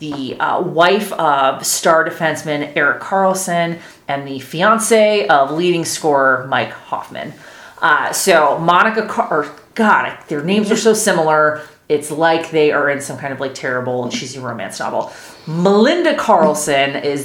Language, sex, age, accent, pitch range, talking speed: English, female, 30-49, American, 135-180 Hz, 155 wpm